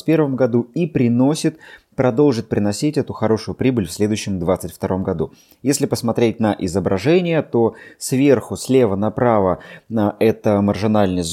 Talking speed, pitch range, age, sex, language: 120 wpm, 100-130 Hz, 20-39, male, Russian